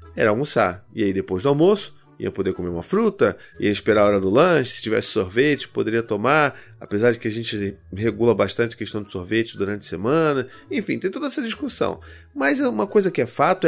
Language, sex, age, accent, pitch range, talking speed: Portuguese, male, 30-49, Brazilian, 115-165 Hz, 210 wpm